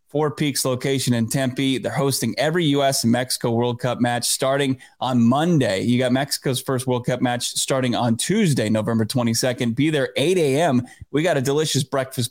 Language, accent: English, American